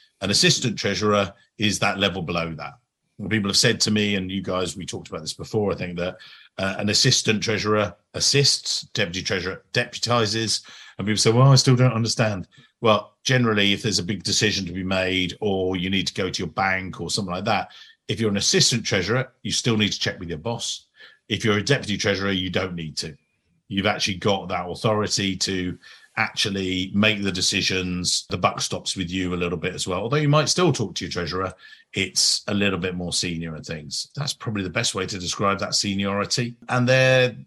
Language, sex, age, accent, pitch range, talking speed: English, male, 50-69, British, 95-115 Hz, 210 wpm